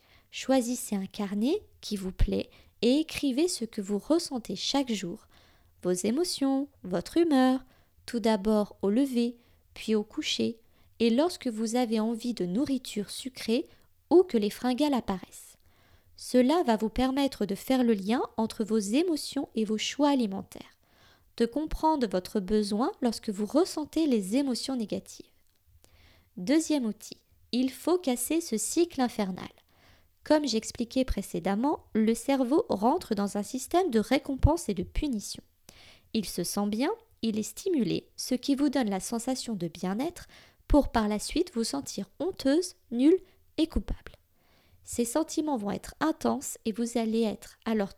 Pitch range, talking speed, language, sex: 205-280 Hz, 150 wpm, French, female